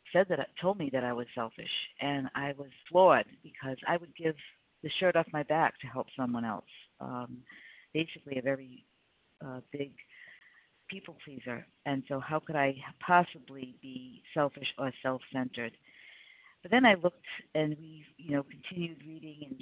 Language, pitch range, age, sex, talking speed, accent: English, 130-155 Hz, 50-69, female, 170 wpm, American